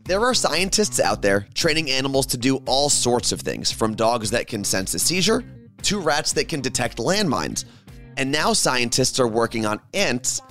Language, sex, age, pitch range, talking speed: English, male, 30-49, 115-160 Hz, 190 wpm